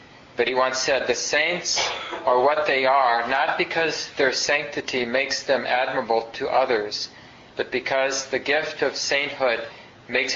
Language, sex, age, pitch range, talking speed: English, male, 40-59, 115-135 Hz, 150 wpm